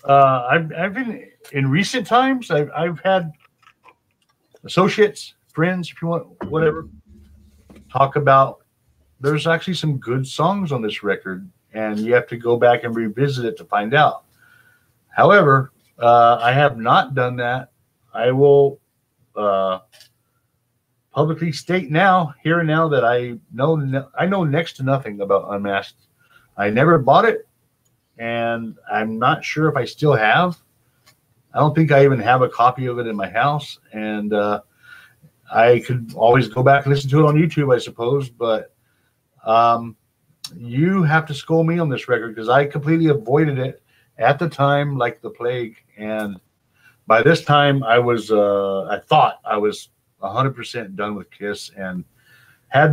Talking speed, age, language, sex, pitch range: 165 wpm, 50-69, English, male, 115-155 Hz